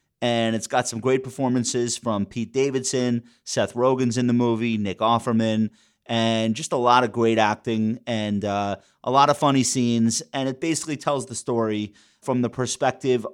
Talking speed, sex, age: 175 wpm, male, 30-49